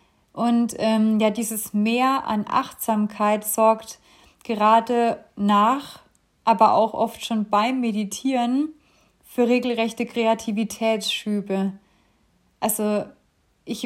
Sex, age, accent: female, 30-49, German